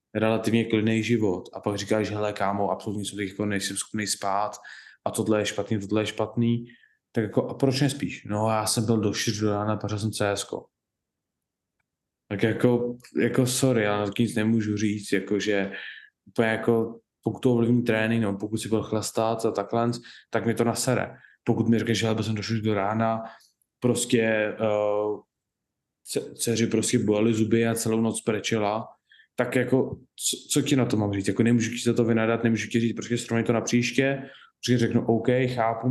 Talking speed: 185 wpm